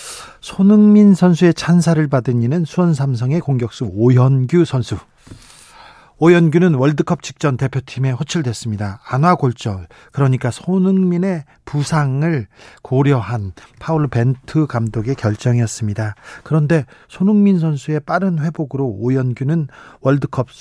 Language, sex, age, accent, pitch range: Korean, male, 40-59, native, 130-165 Hz